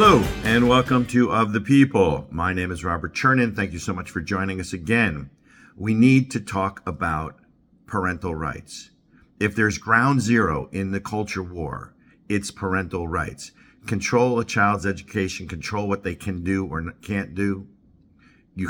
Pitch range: 95-120 Hz